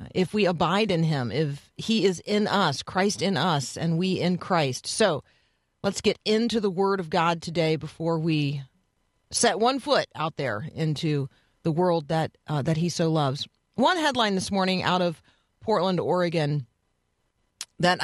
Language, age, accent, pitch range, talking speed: English, 40-59, American, 160-205 Hz, 170 wpm